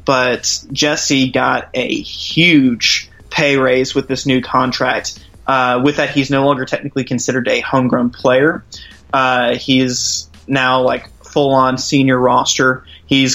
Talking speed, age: 135 wpm, 20-39